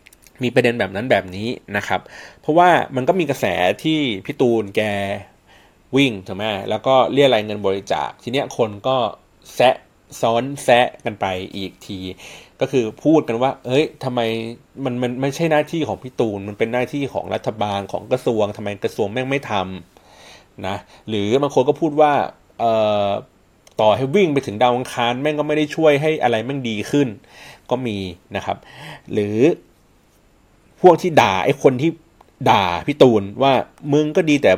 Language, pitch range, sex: Thai, 105-150 Hz, male